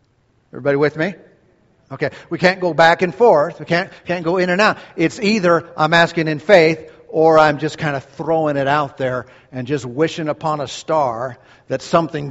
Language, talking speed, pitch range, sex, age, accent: English, 195 wpm, 125-170 Hz, male, 50-69, American